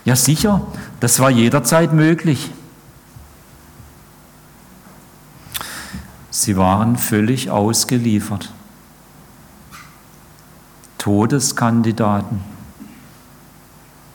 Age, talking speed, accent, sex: 50-69, 45 wpm, German, male